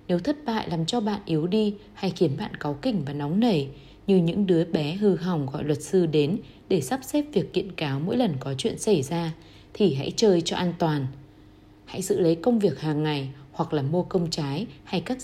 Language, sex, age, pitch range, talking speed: Vietnamese, female, 20-39, 150-195 Hz, 230 wpm